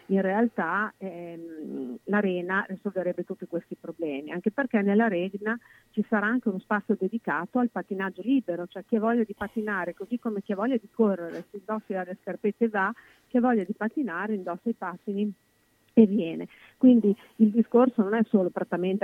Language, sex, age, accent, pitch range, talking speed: Italian, female, 40-59, native, 175-220 Hz, 175 wpm